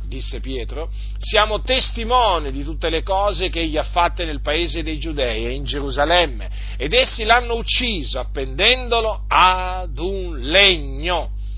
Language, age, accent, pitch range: Italian, 50-69, native, 135-205 Hz